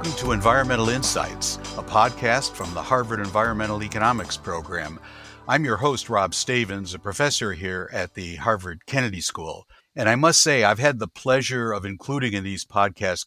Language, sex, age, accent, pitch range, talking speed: English, male, 60-79, American, 100-125 Hz, 170 wpm